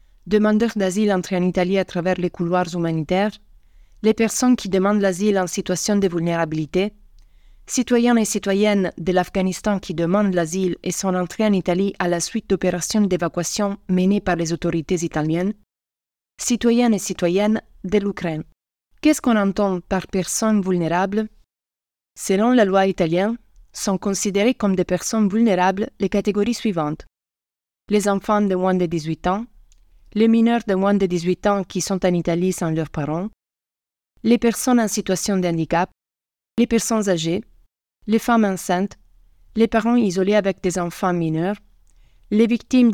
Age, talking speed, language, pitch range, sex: 30-49, 155 wpm, French, 180-215 Hz, female